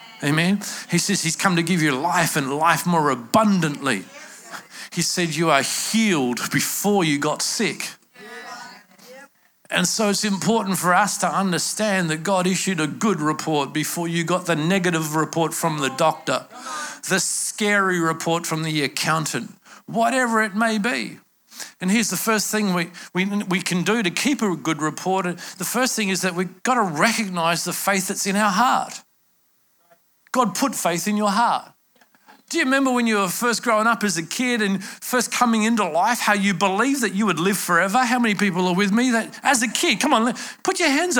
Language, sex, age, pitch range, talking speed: English, male, 50-69, 175-245 Hz, 190 wpm